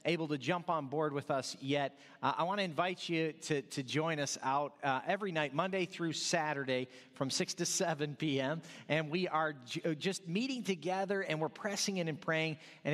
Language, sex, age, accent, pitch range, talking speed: English, male, 40-59, American, 145-180 Hz, 205 wpm